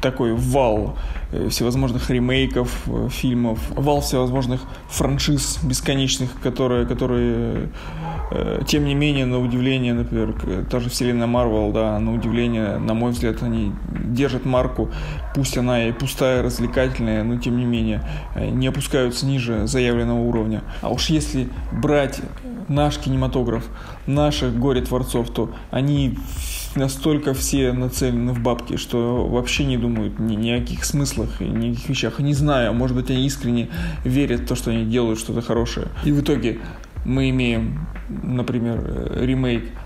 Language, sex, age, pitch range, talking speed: Russian, male, 20-39, 115-135 Hz, 140 wpm